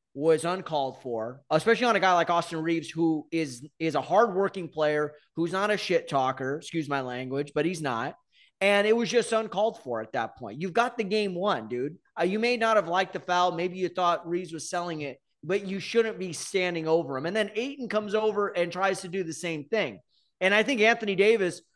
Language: English